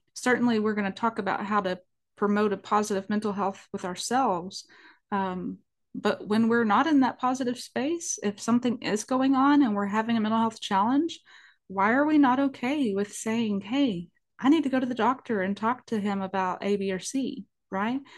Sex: female